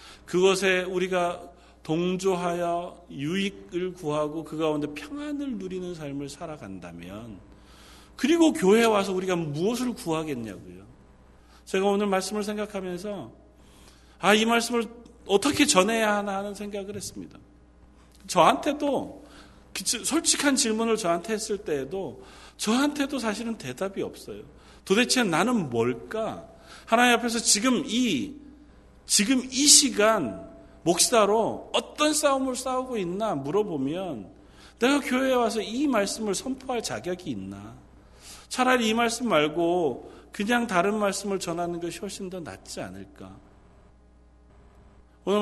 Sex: male